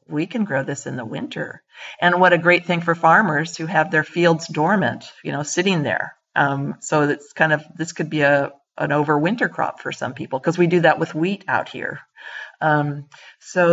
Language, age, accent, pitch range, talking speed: English, 50-69, American, 150-185 Hz, 210 wpm